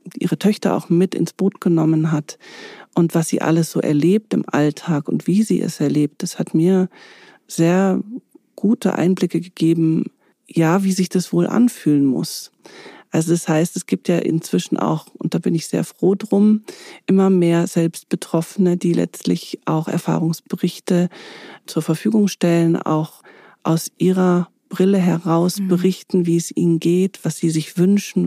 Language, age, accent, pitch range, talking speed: German, 40-59, German, 165-190 Hz, 155 wpm